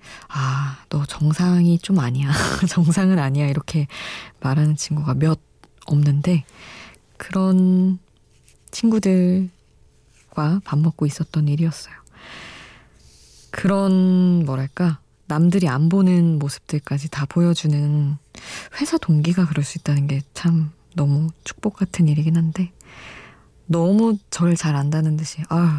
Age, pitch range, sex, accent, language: 20-39, 145-175 Hz, female, native, Korean